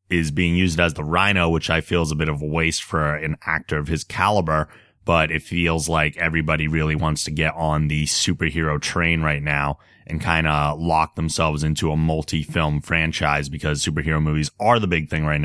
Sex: male